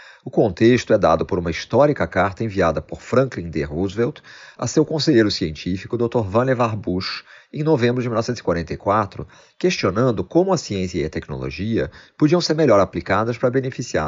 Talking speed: 160 wpm